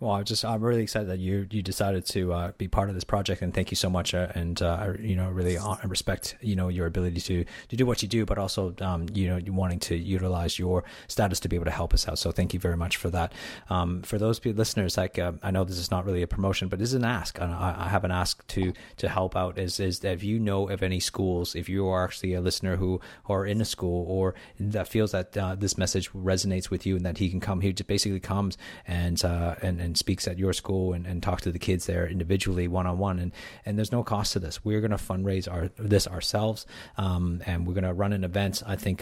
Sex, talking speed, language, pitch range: male, 270 wpm, English, 90-105 Hz